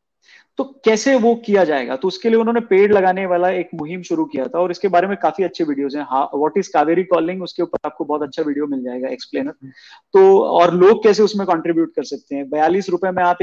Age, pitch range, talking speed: 30-49, 150-185 Hz, 230 wpm